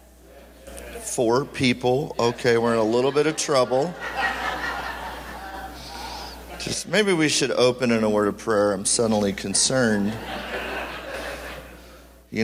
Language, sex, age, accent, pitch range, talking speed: English, male, 40-59, American, 105-140 Hz, 115 wpm